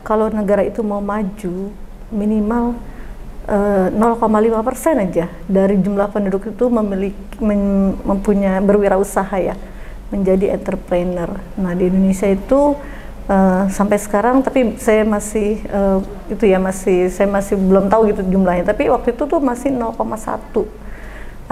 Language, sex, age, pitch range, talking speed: Indonesian, female, 30-49, 190-220 Hz, 130 wpm